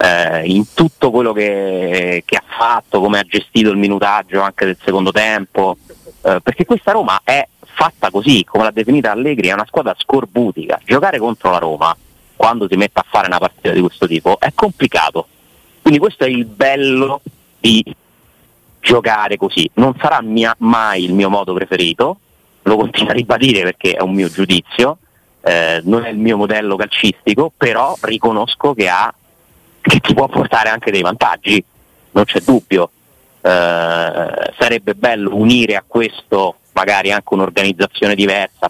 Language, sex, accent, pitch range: Italian, male, native, 95-120 Hz